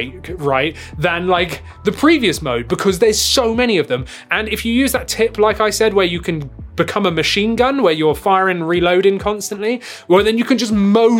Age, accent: 20-39, British